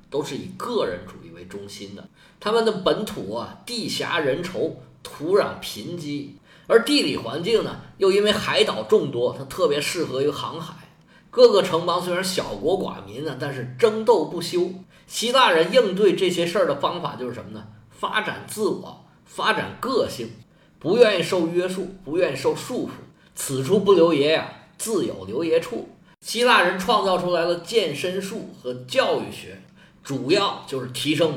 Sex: male